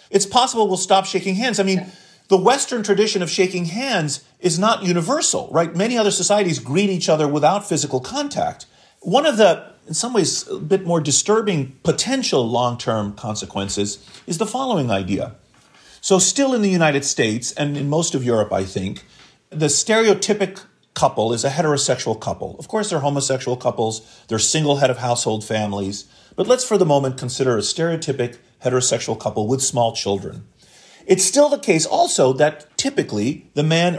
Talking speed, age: 170 wpm, 40-59